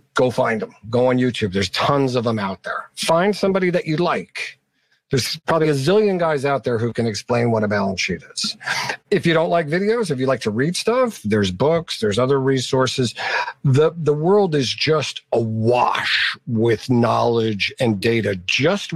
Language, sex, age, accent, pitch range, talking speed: English, male, 50-69, American, 125-170 Hz, 185 wpm